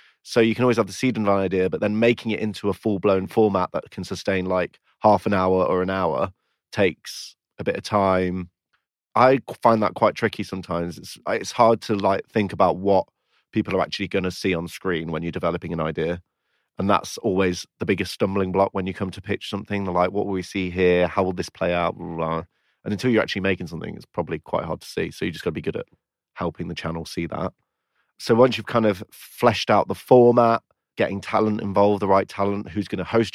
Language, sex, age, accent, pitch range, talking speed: English, male, 30-49, British, 90-105 Hz, 230 wpm